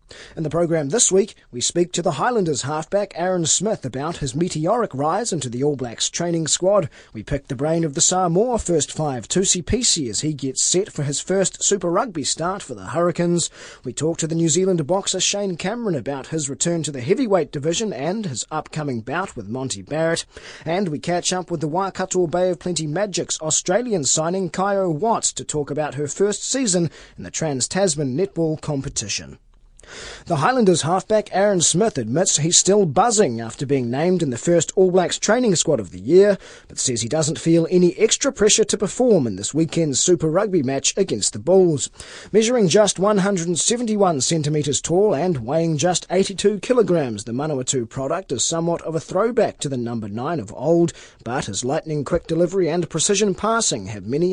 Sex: male